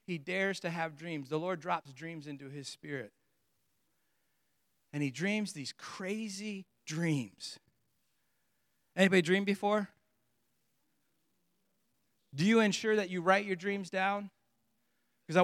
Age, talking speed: 40-59, 120 wpm